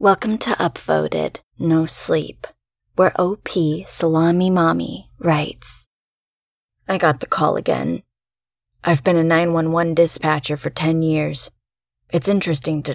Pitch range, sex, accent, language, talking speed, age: 150-175 Hz, female, American, English, 120 wpm, 20-39